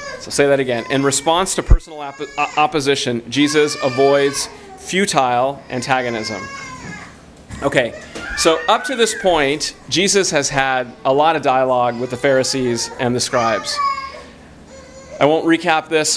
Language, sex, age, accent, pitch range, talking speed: English, male, 30-49, American, 130-155 Hz, 130 wpm